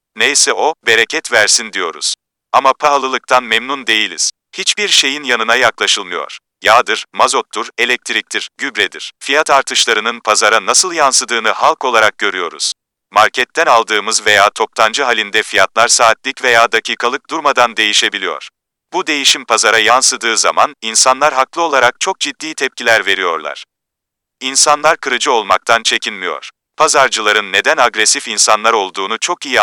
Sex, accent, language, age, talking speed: male, native, Turkish, 40-59, 120 wpm